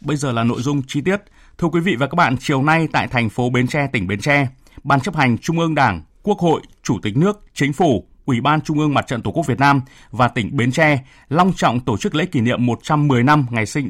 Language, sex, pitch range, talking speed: Vietnamese, male, 125-165 Hz, 265 wpm